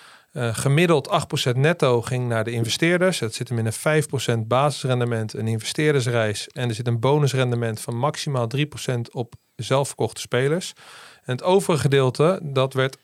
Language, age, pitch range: Dutch, 40-59, 120-145 Hz